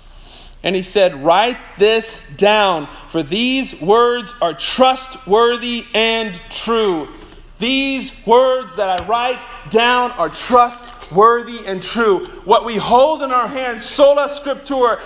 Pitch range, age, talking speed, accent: 235-325 Hz, 40-59, 125 wpm, American